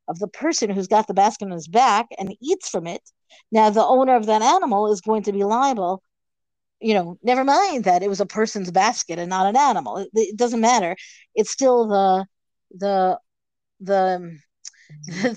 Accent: American